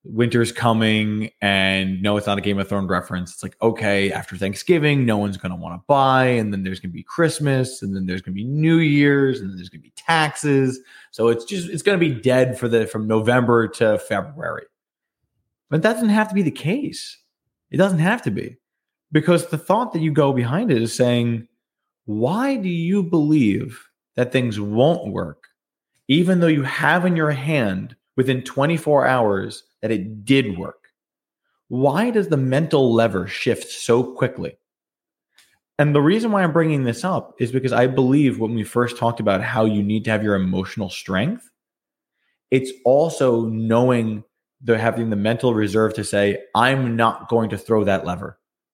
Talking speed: 190 wpm